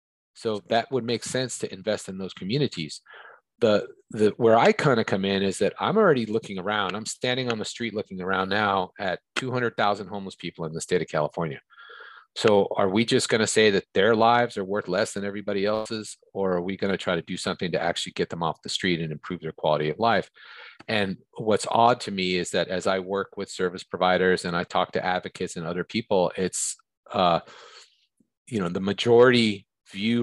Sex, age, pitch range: male, 30-49, 90-110 Hz